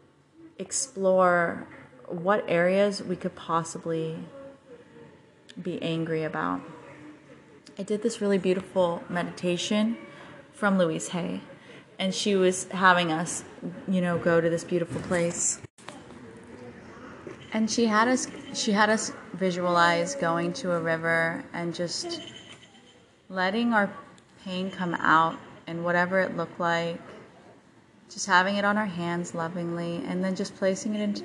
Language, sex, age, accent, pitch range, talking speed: English, female, 30-49, American, 170-205 Hz, 130 wpm